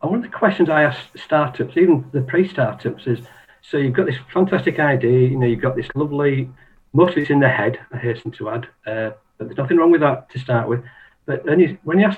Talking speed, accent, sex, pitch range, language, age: 240 wpm, British, male, 120-155 Hz, English, 50-69